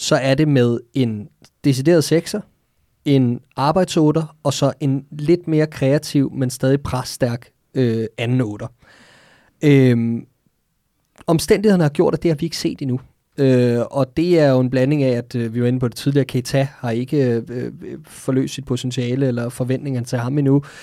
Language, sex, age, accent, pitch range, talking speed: Danish, male, 20-39, native, 130-155 Hz, 175 wpm